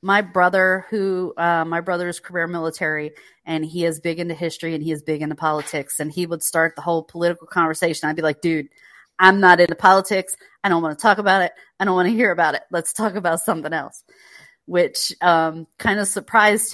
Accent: American